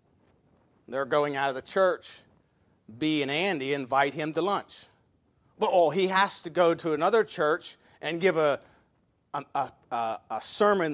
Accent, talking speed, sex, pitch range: American, 160 wpm, male, 165-230 Hz